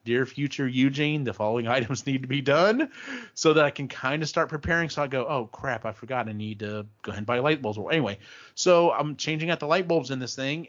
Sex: male